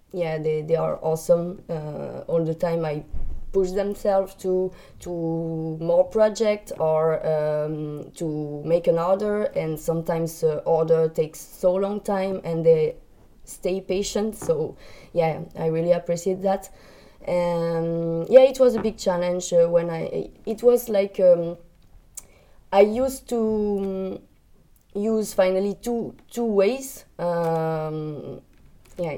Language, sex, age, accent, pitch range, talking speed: English, female, 20-39, French, 165-195 Hz, 135 wpm